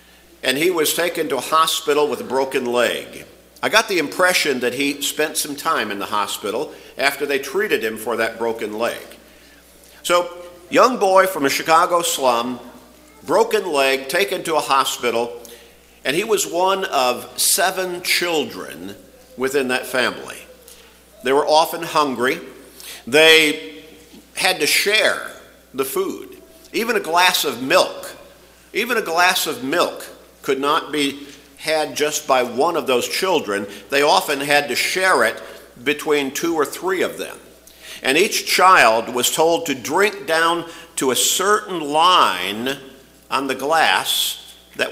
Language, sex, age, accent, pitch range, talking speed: English, male, 50-69, American, 120-185 Hz, 150 wpm